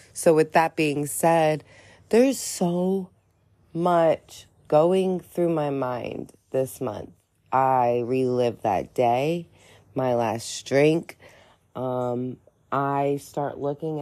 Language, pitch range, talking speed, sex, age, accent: English, 125-165 Hz, 105 wpm, female, 30-49, American